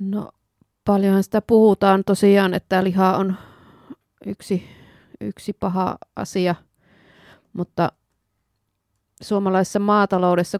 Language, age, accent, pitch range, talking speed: Finnish, 30-49, native, 160-195 Hz, 85 wpm